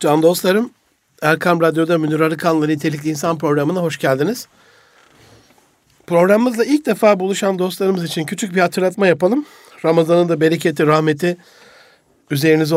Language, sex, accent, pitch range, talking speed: Turkish, male, native, 160-220 Hz, 120 wpm